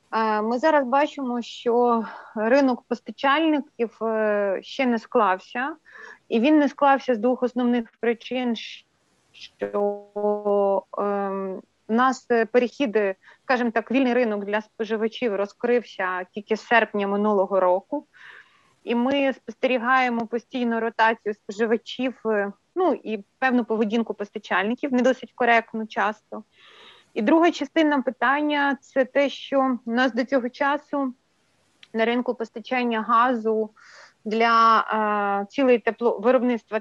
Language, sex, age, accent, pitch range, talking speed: Ukrainian, female, 30-49, native, 225-270 Hz, 115 wpm